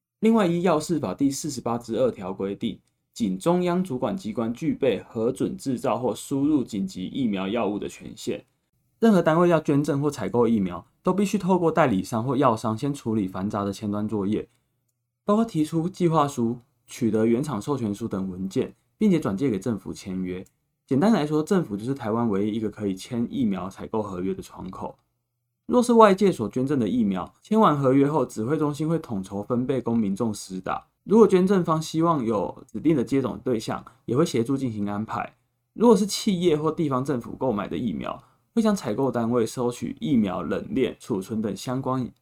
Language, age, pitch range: Chinese, 20-39, 110-160 Hz